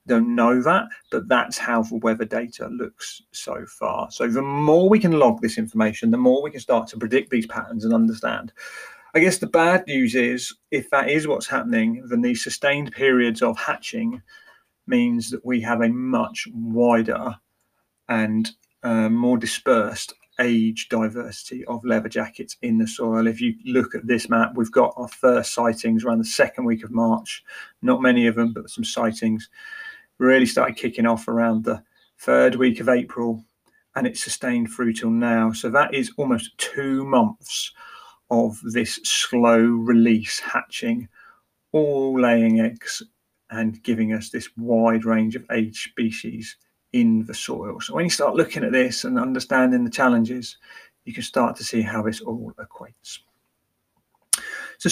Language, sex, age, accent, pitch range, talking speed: English, male, 40-59, British, 115-175 Hz, 170 wpm